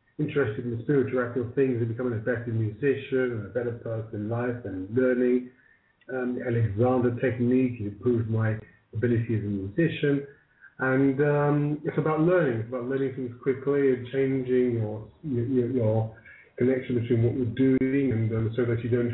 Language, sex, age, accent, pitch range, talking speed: English, male, 30-49, British, 115-140 Hz, 170 wpm